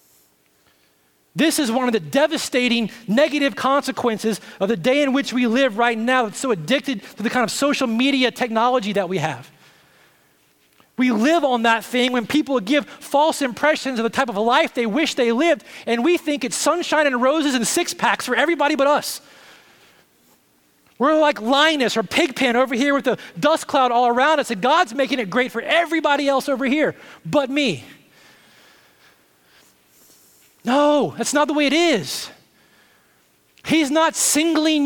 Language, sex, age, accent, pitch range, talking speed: English, male, 30-49, American, 235-300 Hz, 170 wpm